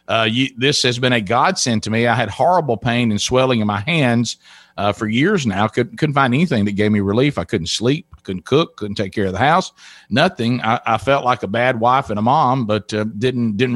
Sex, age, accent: male, 50-69, American